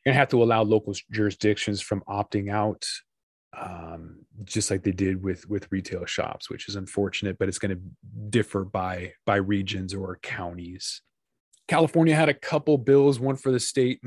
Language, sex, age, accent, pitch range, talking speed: English, male, 20-39, American, 100-120 Hz, 165 wpm